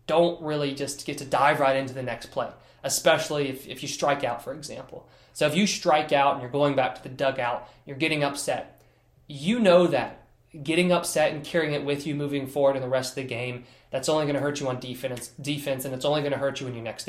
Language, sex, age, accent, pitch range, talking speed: English, male, 20-39, American, 130-155 Hz, 250 wpm